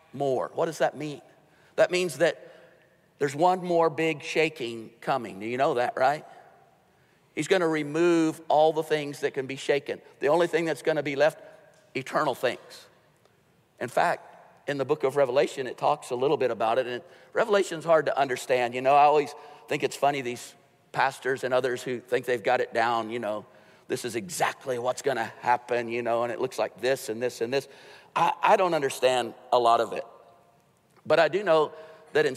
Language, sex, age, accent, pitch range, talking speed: English, male, 50-69, American, 125-160 Hz, 205 wpm